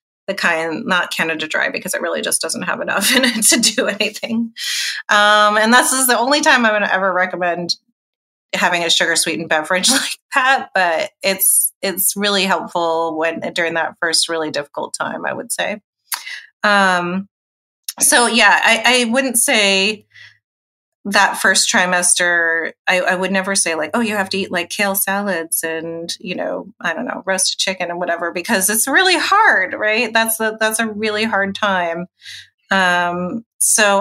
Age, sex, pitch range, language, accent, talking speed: 30-49, female, 175-225 Hz, English, American, 175 wpm